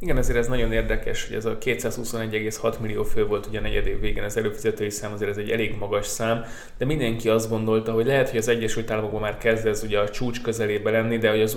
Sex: male